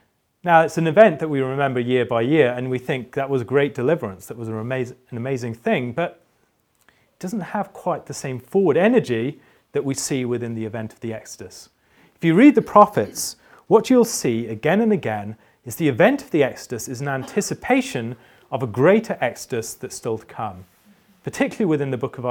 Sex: male